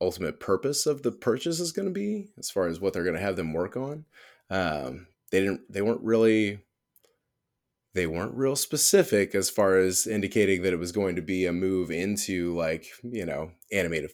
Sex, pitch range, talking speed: male, 85-115 Hz, 200 wpm